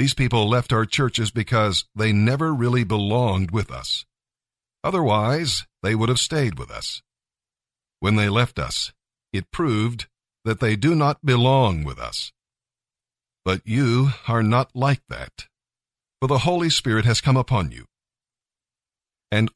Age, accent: 50-69, American